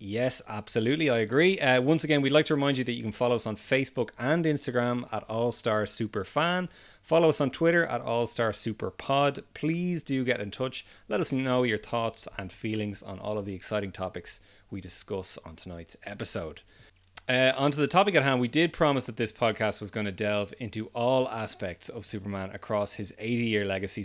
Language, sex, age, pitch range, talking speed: English, male, 30-49, 100-130 Hz, 205 wpm